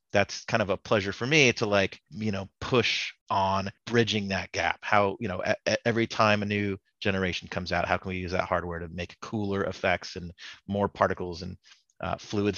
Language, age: English, 30-49